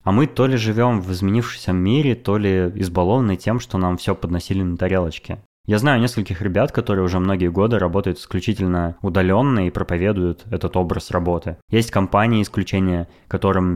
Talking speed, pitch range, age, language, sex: 165 wpm, 90-110 Hz, 20-39, Russian, male